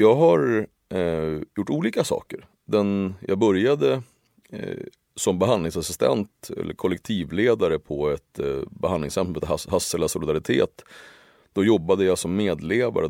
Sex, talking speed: male, 120 wpm